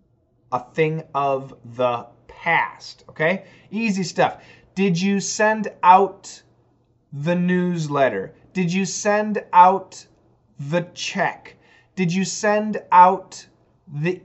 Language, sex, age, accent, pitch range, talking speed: English, male, 30-49, American, 135-180 Hz, 100 wpm